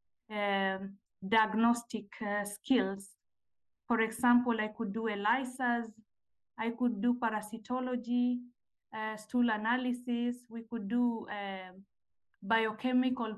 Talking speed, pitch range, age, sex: 100 wpm, 215-245 Hz, 20-39, female